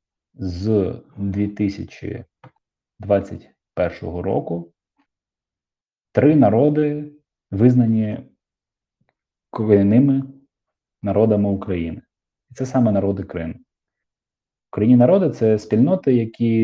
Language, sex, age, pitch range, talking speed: Ukrainian, male, 20-39, 100-125 Hz, 70 wpm